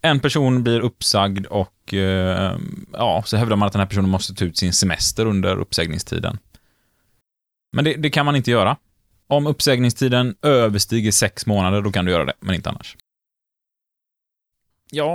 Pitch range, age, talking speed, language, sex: 100-130 Hz, 20-39, 160 wpm, Swedish, male